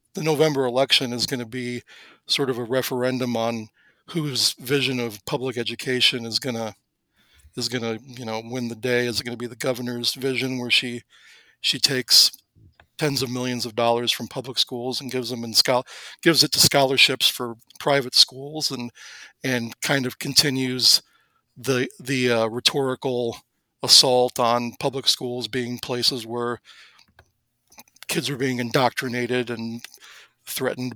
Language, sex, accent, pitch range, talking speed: English, male, American, 120-135 Hz, 155 wpm